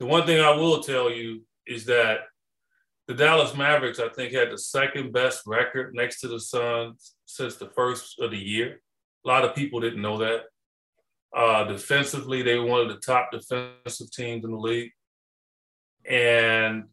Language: English